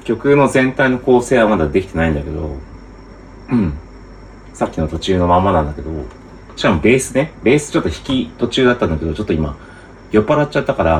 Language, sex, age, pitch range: Japanese, male, 40-59, 85-130 Hz